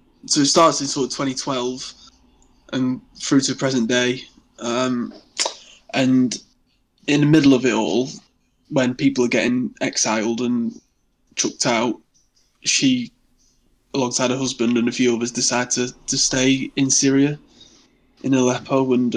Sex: male